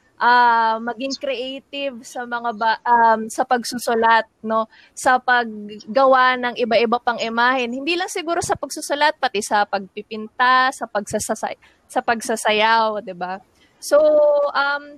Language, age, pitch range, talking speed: Filipino, 20-39, 220-270 Hz, 130 wpm